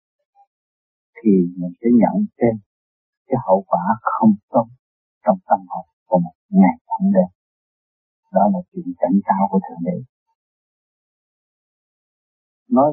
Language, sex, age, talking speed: Vietnamese, male, 60-79, 125 wpm